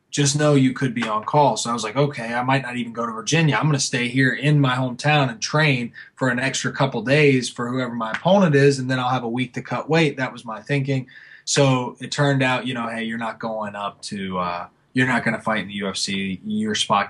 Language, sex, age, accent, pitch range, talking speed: English, male, 20-39, American, 120-145 Hz, 260 wpm